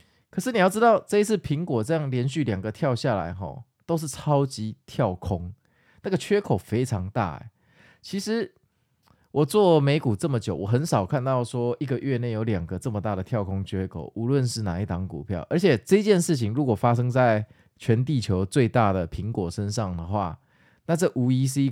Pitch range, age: 105-135 Hz, 20-39